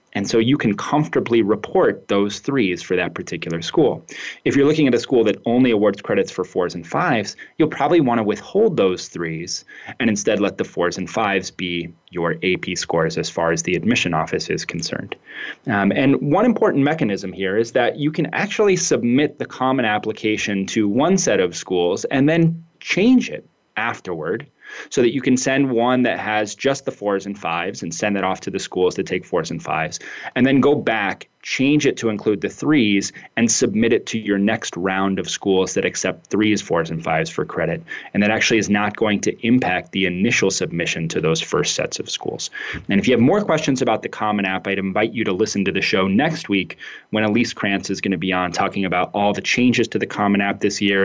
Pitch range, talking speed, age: 95-125 Hz, 215 wpm, 30-49